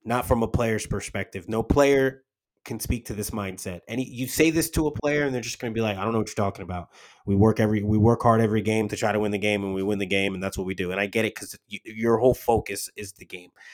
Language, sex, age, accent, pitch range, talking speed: English, male, 30-49, American, 105-130 Hz, 300 wpm